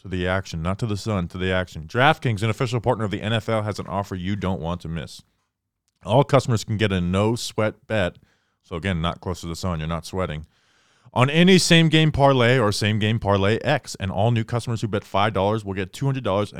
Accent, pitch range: American, 90-115 Hz